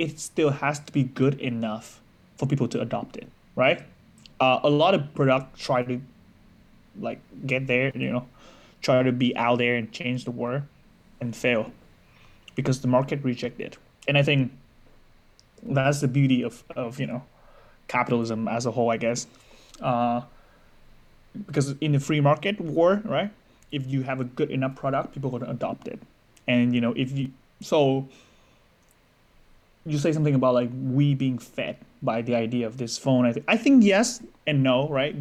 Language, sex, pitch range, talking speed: English, male, 125-145 Hz, 180 wpm